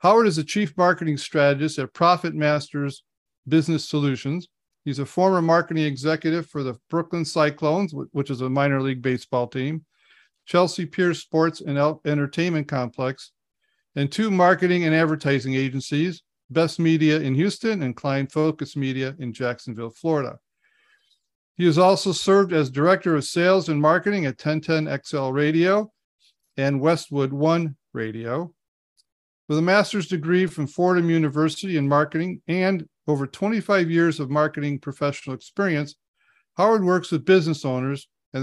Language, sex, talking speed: English, male, 140 wpm